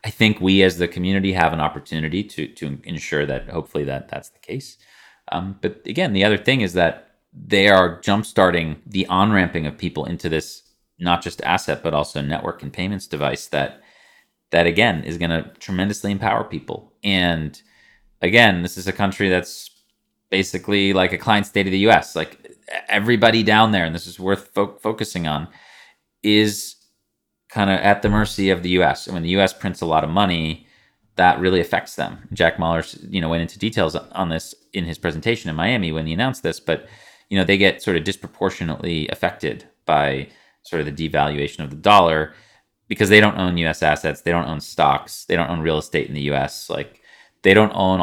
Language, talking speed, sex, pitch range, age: English, 200 wpm, male, 80-100 Hz, 30-49